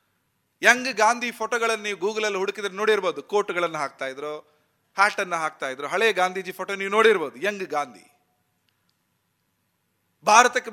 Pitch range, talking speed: 180-230 Hz, 135 wpm